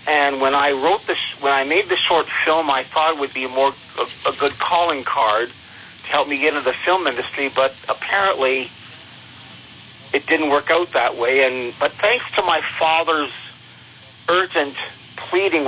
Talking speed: 185 wpm